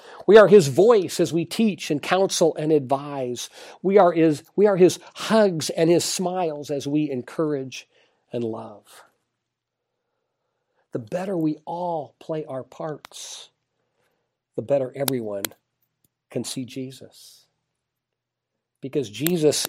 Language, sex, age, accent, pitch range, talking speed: English, male, 50-69, American, 140-195 Hz, 120 wpm